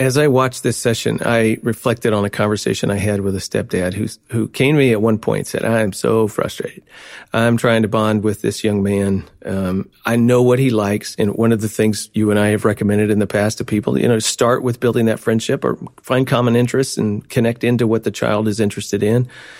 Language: English